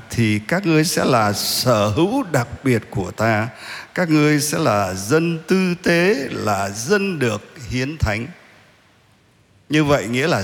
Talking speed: 155 wpm